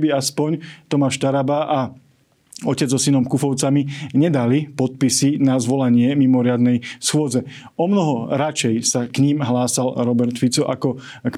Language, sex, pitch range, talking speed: Slovak, male, 130-145 Hz, 130 wpm